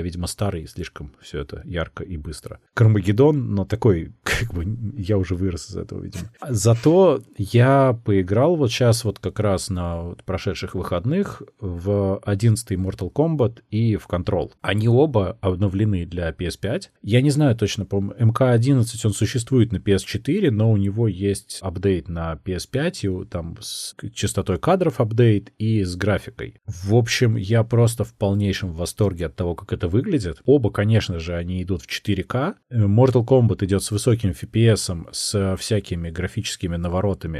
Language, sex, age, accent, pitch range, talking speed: Russian, male, 30-49, native, 95-115 Hz, 155 wpm